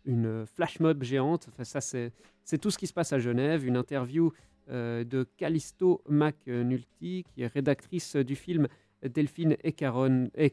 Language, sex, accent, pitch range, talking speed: French, male, French, 125-165 Hz, 165 wpm